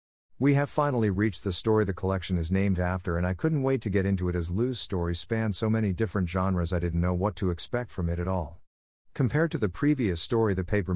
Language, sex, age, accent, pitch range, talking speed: English, male, 50-69, American, 90-110 Hz, 240 wpm